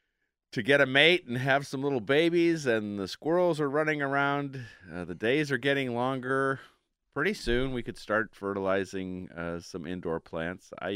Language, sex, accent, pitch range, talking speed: English, male, American, 85-120 Hz, 175 wpm